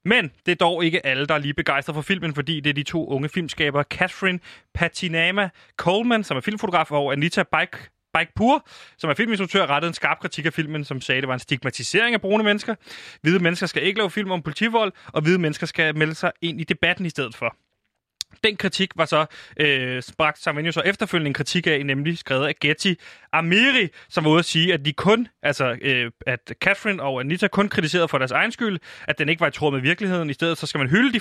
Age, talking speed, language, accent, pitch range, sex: 30-49, 230 wpm, Danish, native, 145-185 Hz, male